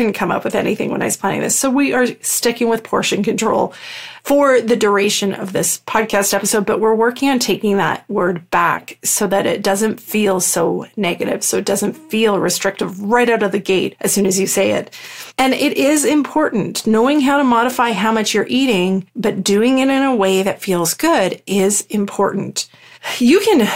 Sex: female